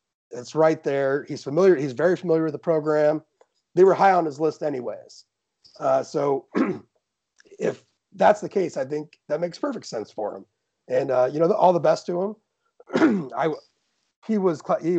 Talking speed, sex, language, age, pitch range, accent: 180 wpm, male, English, 30-49, 120-165 Hz, American